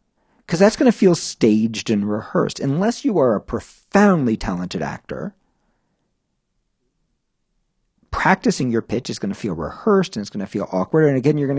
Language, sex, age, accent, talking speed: English, male, 50-69, American, 170 wpm